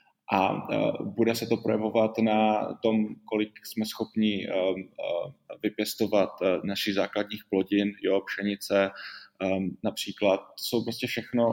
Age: 20-39